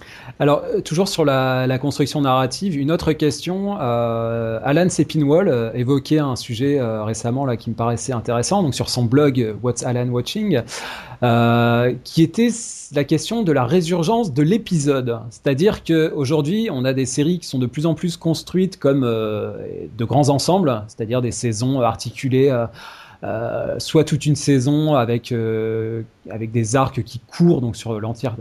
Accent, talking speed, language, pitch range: French, 165 wpm, French, 120-150 Hz